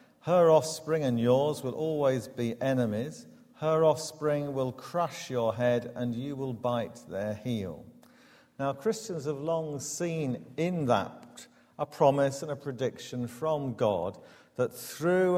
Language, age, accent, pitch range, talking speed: English, 50-69, British, 110-150 Hz, 140 wpm